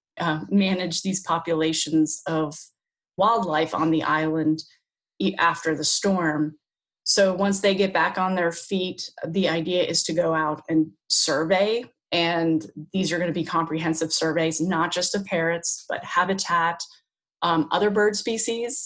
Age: 20-39